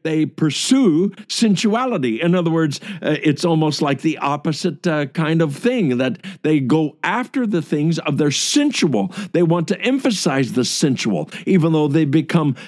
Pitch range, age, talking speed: 135-190 Hz, 60-79, 165 wpm